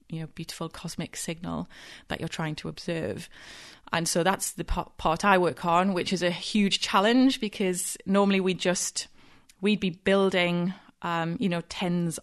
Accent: British